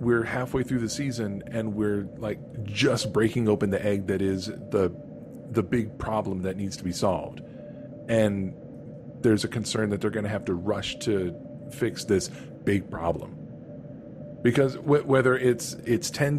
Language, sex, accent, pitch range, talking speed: English, male, American, 105-130 Hz, 165 wpm